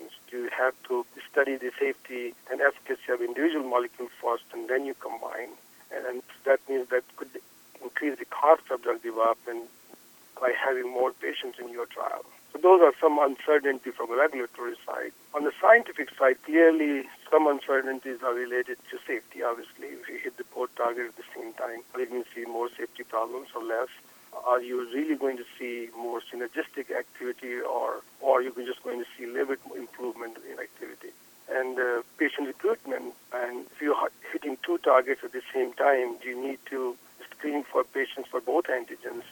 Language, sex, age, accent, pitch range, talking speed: English, male, 50-69, Indian, 125-205 Hz, 185 wpm